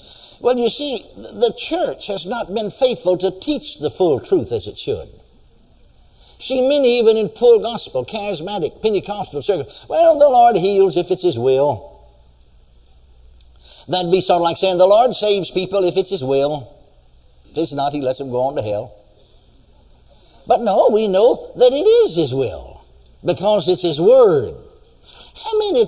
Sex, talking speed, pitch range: male, 170 wpm, 140-225 Hz